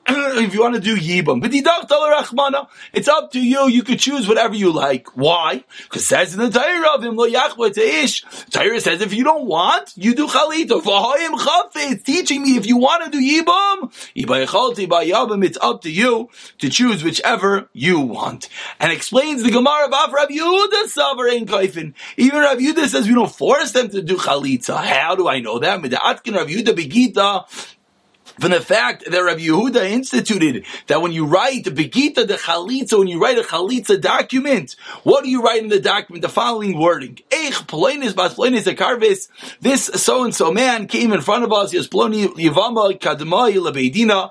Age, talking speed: 30-49, 160 wpm